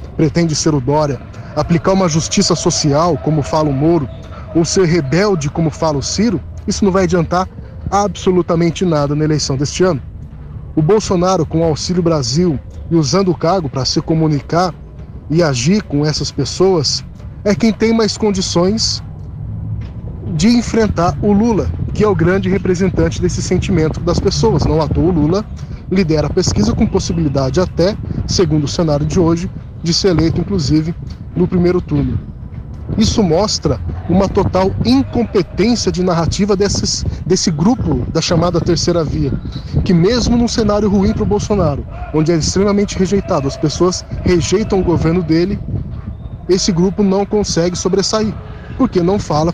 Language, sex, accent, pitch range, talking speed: Portuguese, male, Brazilian, 150-190 Hz, 155 wpm